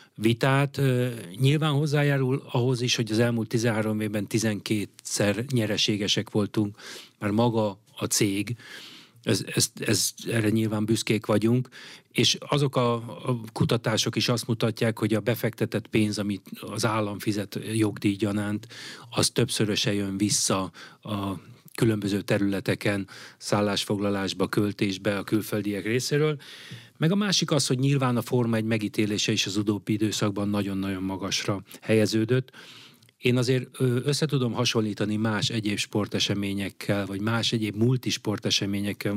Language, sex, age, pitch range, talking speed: Hungarian, male, 30-49, 100-120 Hz, 125 wpm